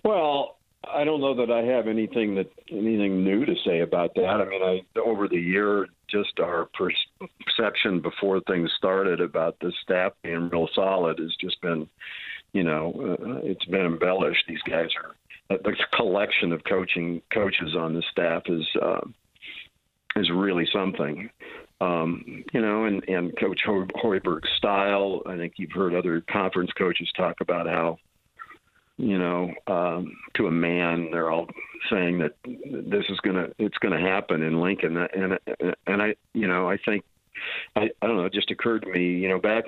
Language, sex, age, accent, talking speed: English, male, 50-69, American, 170 wpm